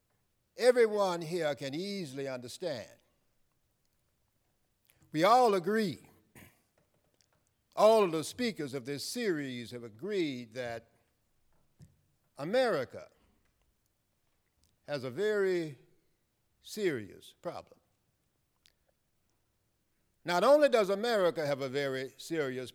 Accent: American